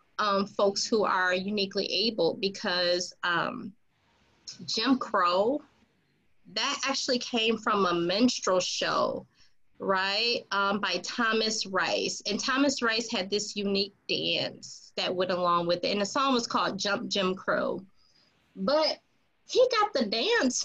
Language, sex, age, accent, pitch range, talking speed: English, female, 20-39, American, 195-245 Hz, 135 wpm